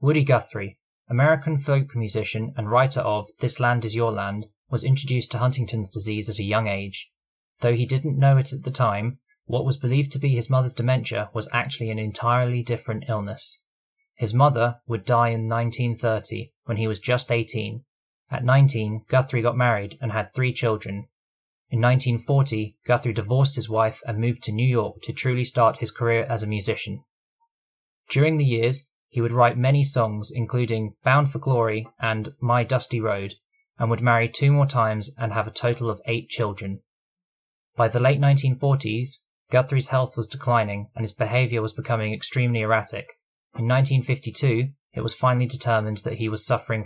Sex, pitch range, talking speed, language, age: male, 110-130 Hz, 175 wpm, English, 20-39